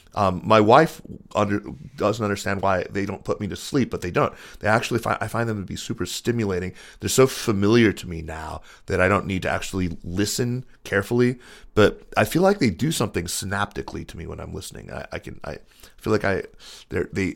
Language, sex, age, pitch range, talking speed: English, male, 30-49, 90-110 Hz, 210 wpm